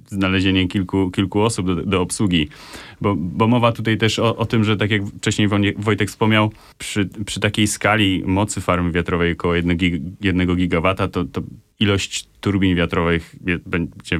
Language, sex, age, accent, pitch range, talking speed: Polish, male, 30-49, native, 80-105 Hz, 165 wpm